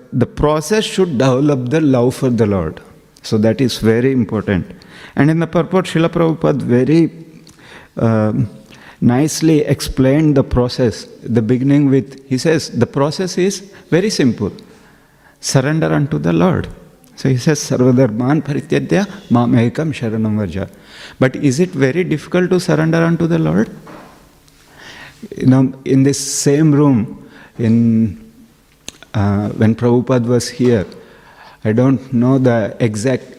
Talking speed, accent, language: 135 wpm, Indian, English